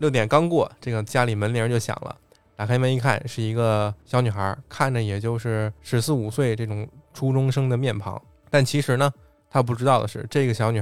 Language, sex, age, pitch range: Chinese, male, 20-39, 105-135 Hz